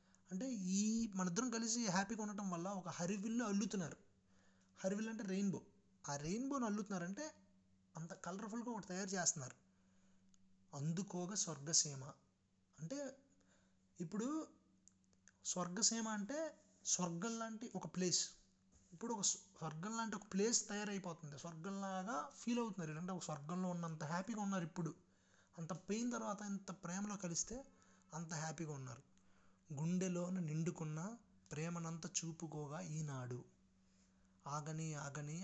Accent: native